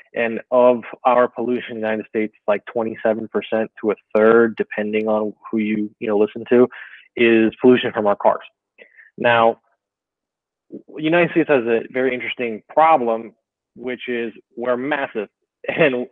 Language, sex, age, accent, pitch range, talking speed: English, male, 20-39, American, 115-130 Hz, 150 wpm